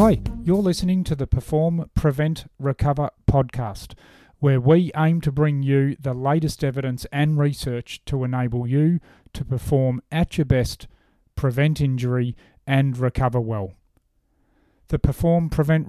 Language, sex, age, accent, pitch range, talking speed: English, male, 40-59, Australian, 130-155 Hz, 135 wpm